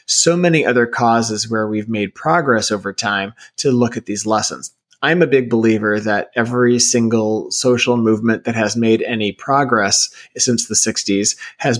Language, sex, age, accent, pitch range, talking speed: English, male, 30-49, American, 110-130 Hz, 170 wpm